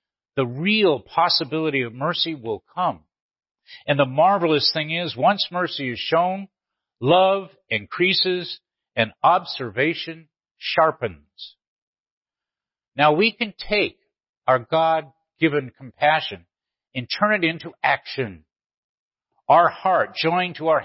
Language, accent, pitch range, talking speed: English, American, 125-175 Hz, 110 wpm